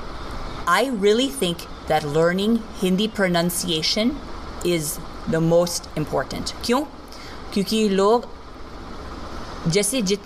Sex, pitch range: female, 155-200 Hz